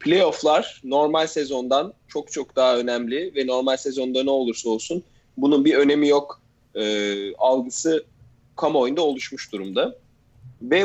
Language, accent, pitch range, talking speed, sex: English, Turkish, 110-135 Hz, 125 wpm, male